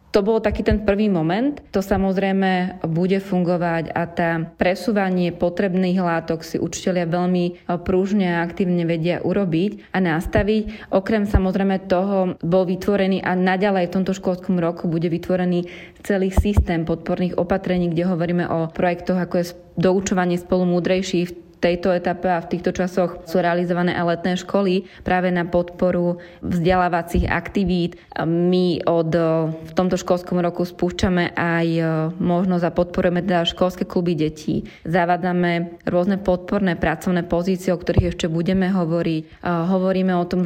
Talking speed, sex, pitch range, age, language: 140 wpm, female, 175-185 Hz, 20-39, Slovak